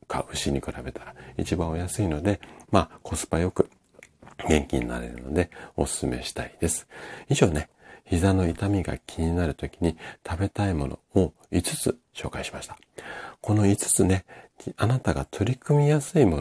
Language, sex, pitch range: Japanese, male, 70-95 Hz